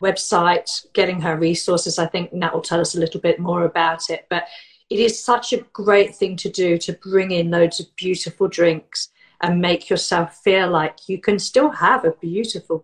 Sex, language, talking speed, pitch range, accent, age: female, English, 200 wpm, 160-195 Hz, British, 40-59